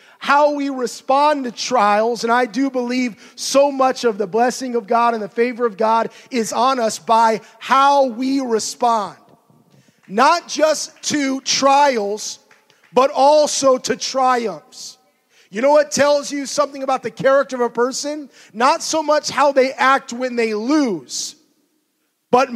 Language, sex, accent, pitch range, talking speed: English, male, American, 220-275 Hz, 155 wpm